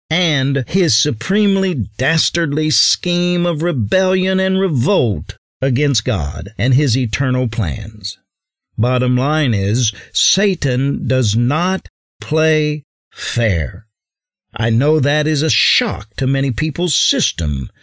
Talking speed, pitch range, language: 110 wpm, 115-160 Hz, English